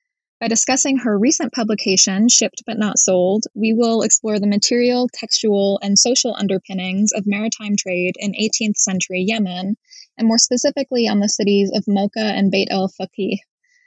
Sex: female